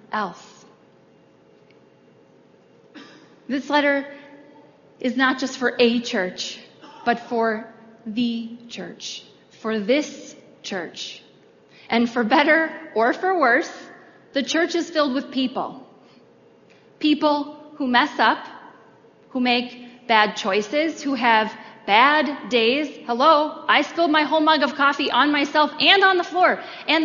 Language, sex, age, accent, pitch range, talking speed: English, female, 30-49, American, 240-315 Hz, 120 wpm